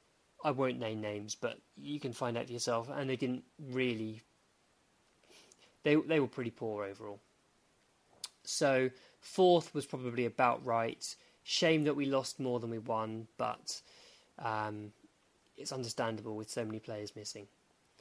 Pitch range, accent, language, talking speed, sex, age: 125-160 Hz, British, English, 145 wpm, male, 20-39